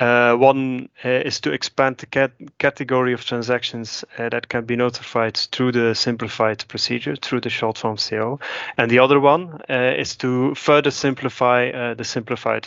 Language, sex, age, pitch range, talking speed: English, male, 30-49, 115-125 Hz, 170 wpm